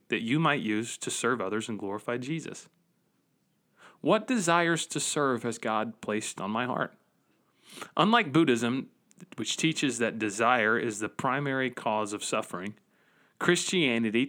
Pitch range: 115-160 Hz